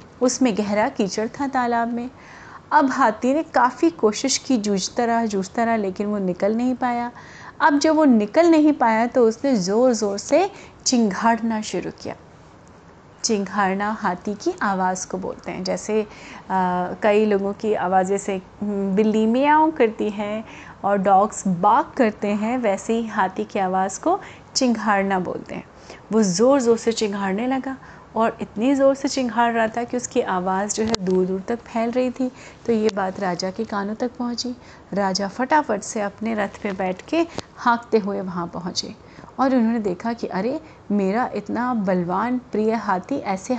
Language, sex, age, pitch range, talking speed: Hindi, female, 30-49, 200-245 Hz, 165 wpm